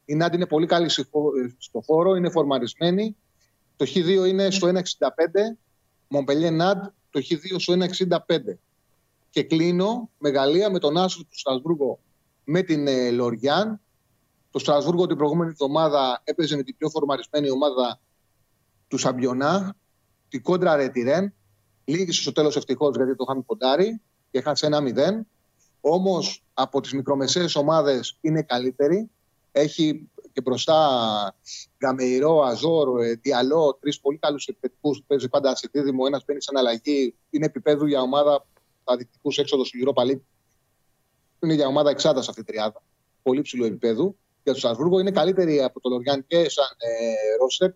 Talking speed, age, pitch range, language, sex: 145 wpm, 30-49, 130-170 Hz, Greek, male